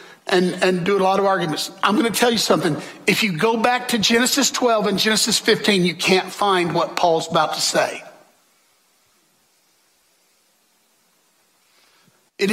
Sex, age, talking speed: male, 60-79, 155 wpm